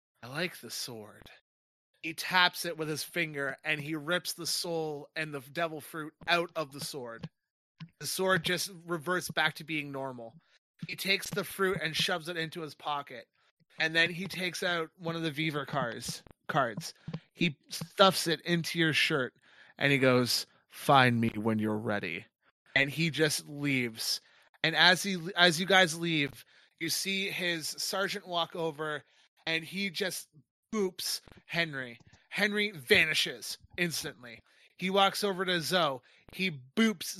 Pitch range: 145-180 Hz